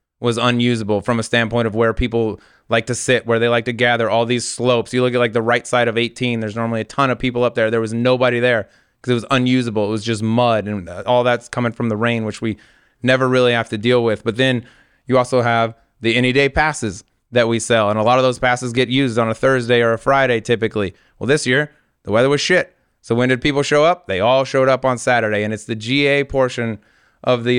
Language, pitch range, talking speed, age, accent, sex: English, 115-125 Hz, 250 wpm, 20-39, American, male